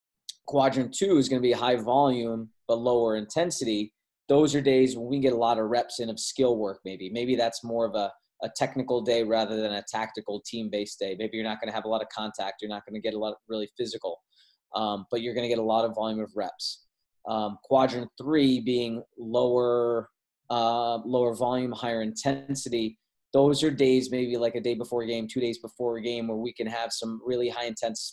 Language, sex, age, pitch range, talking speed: English, male, 20-39, 110-130 Hz, 225 wpm